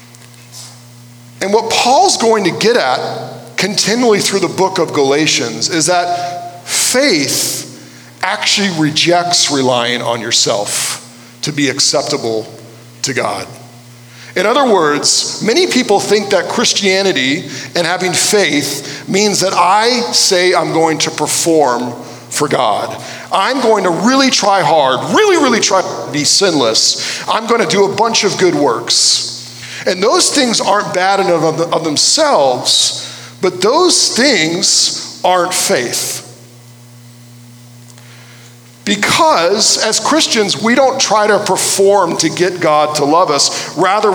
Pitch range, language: 120-200 Hz, English